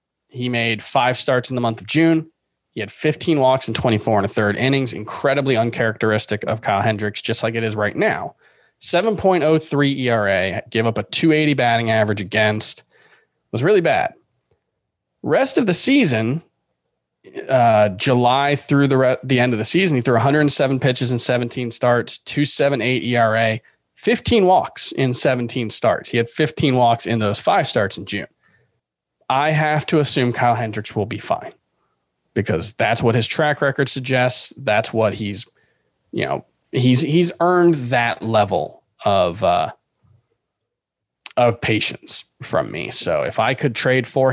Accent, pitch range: American, 110-135 Hz